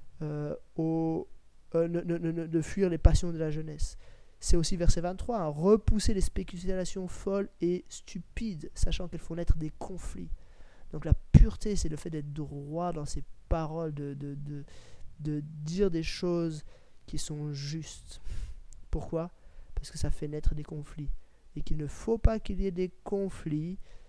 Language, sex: French, male